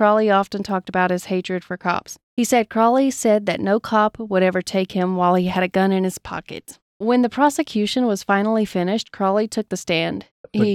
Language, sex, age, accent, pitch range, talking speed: English, female, 30-49, American, 180-215 Hz, 210 wpm